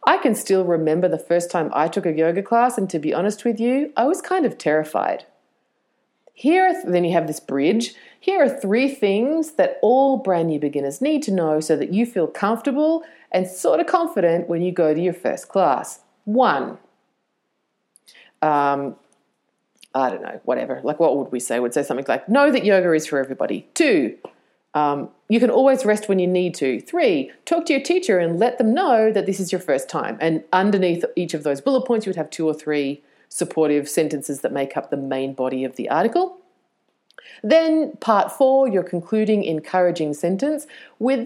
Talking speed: 200 wpm